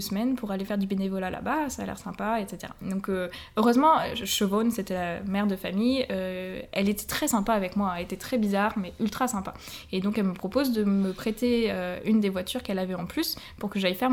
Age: 20-39